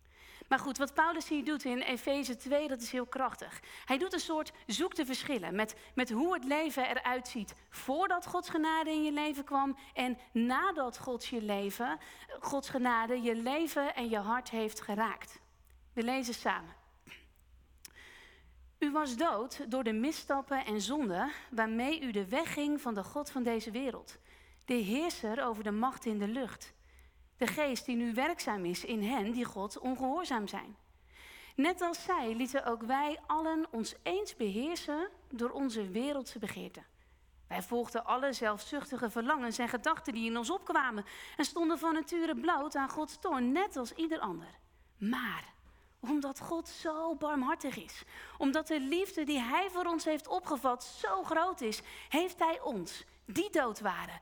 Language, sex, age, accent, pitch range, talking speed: Dutch, female, 40-59, Dutch, 230-310 Hz, 165 wpm